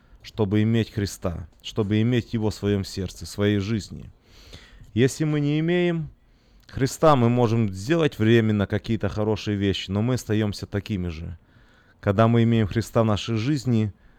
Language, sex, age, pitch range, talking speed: Russian, male, 30-49, 100-120 Hz, 150 wpm